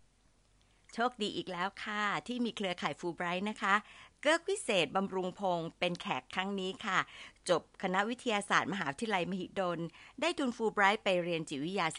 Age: 60-79